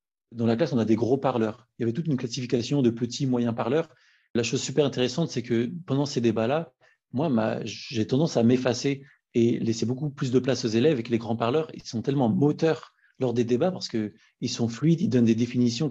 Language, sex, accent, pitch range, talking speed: French, male, French, 120-145 Hz, 230 wpm